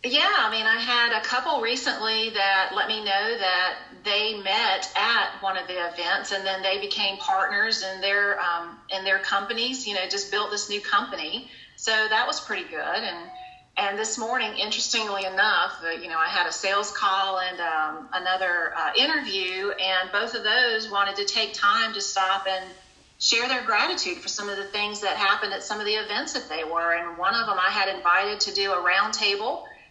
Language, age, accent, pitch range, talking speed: English, 40-59, American, 195-235 Hz, 205 wpm